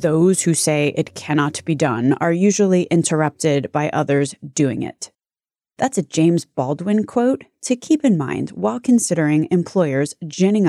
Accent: American